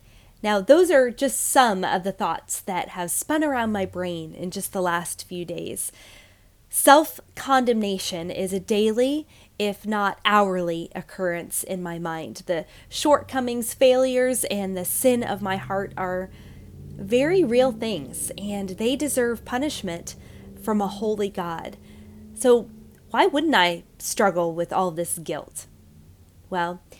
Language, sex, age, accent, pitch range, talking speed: English, female, 20-39, American, 175-235 Hz, 140 wpm